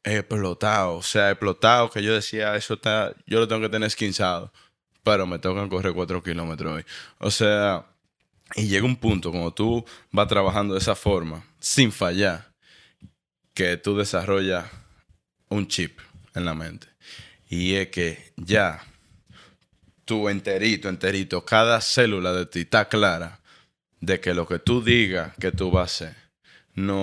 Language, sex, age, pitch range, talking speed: Spanish, male, 20-39, 95-120 Hz, 160 wpm